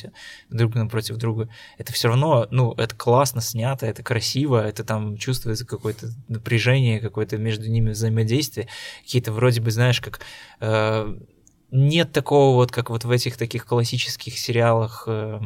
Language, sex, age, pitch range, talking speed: Russian, male, 20-39, 115-130 Hz, 150 wpm